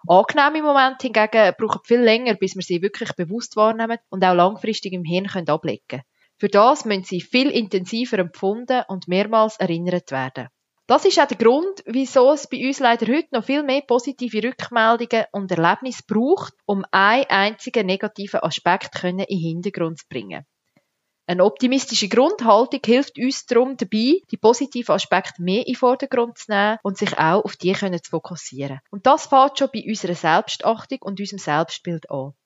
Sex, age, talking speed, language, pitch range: female, 20-39, 170 wpm, German, 185-245 Hz